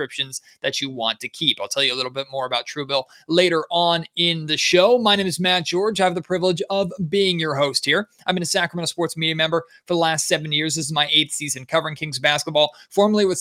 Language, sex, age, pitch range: English, male, 30-49, 145-175 Hz